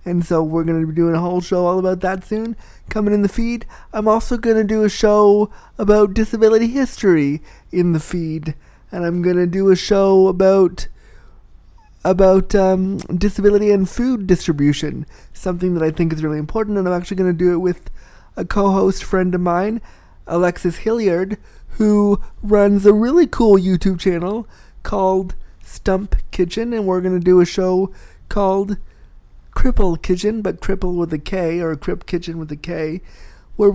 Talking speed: 180 wpm